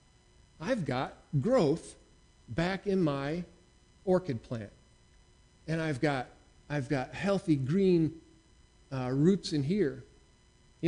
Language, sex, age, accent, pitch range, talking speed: English, male, 40-59, American, 145-195 Hz, 105 wpm